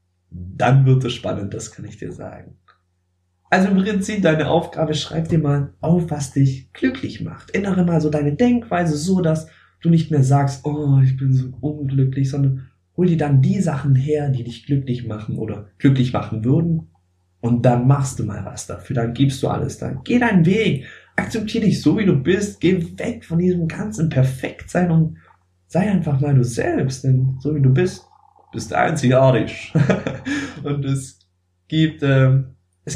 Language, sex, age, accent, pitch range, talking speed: German, male, 20-39, German, 120-160 Hz, 175 wpm